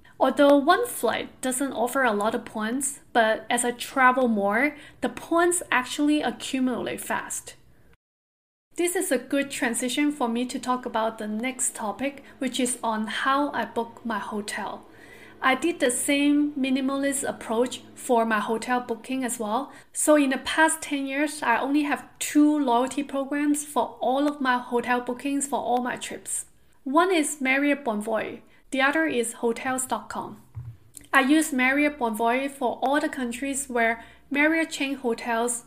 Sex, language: female, English